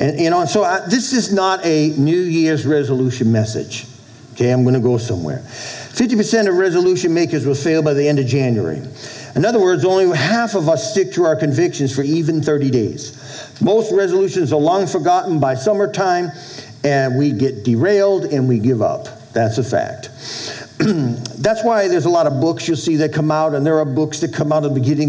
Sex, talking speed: male, 200 wpm